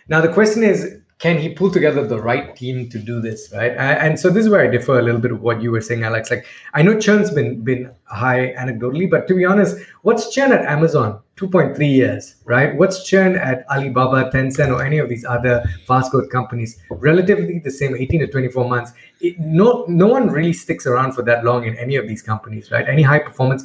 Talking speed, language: 220 wpm, English